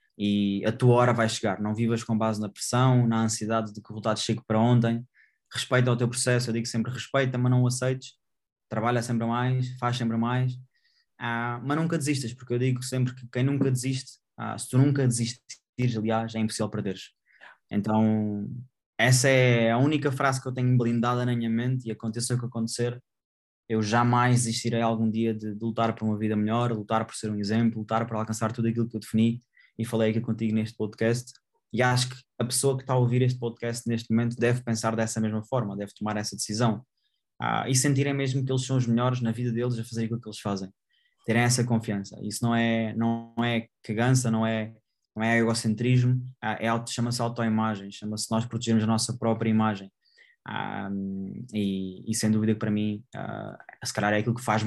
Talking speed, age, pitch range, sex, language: 210 wpm, 20-39, 110-125 Hz, male, Portuguese